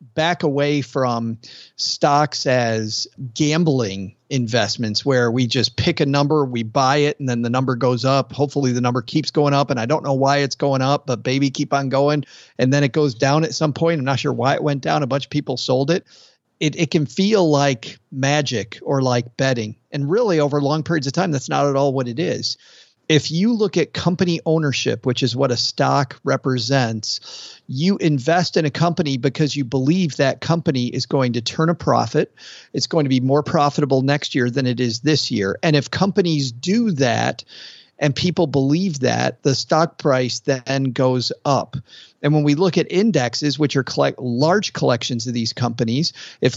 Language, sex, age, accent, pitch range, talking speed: English, male, 40-59, American, 125-150 Hz, 200 wpm